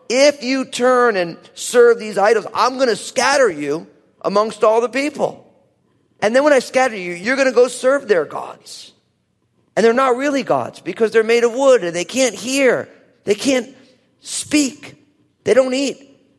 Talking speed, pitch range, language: 180 wpm, 155-245 Hz, English